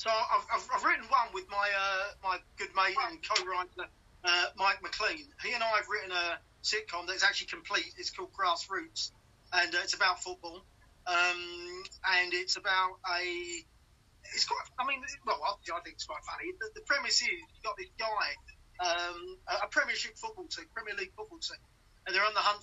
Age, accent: 30-49, British